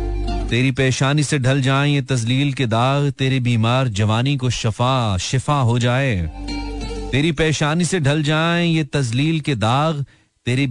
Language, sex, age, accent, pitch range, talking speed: Hindi, male, 40-59, native, 105-135 Hz, 150 wpm